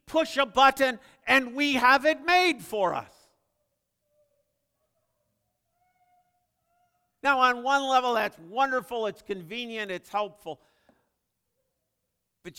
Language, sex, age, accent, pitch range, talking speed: English, male, 50-69, American, 175-245 Hz, 100 wpm